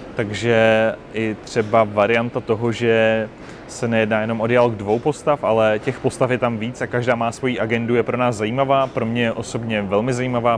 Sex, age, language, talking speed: male, 20-39, Czech, 195 wpm